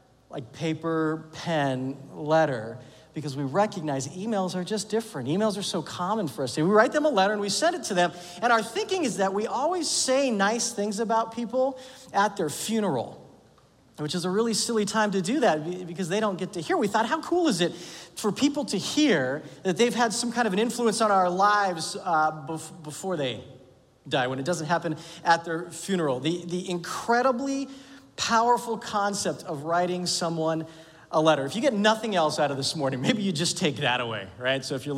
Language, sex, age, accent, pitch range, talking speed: English, male, 40-59, American, 155-230 Hz, 205 wpm